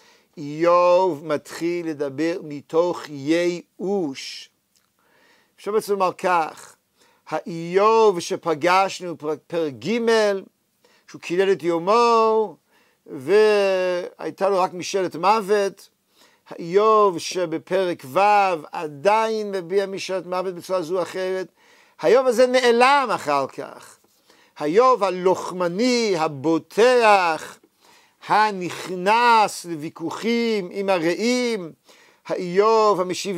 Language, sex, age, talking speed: Hebrew, male, 50-69, 85 wpm